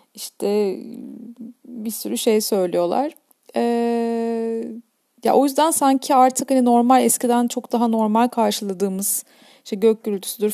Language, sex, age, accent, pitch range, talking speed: Turkish, female, 30-49, native, 210-265 Hz, 120 wpm